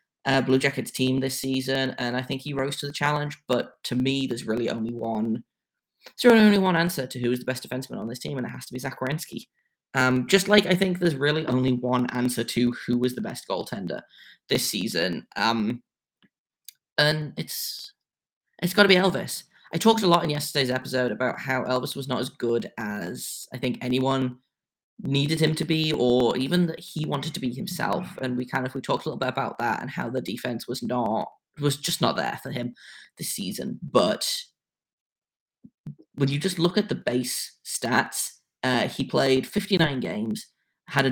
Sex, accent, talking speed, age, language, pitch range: male, British, 205 wpm, 10-29, English, 125-160 Hz